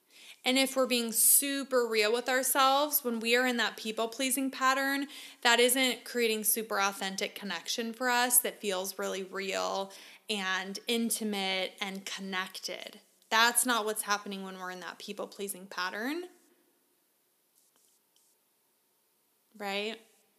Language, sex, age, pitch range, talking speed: English, female, 20-39, 220-275 Hz, 125 wpm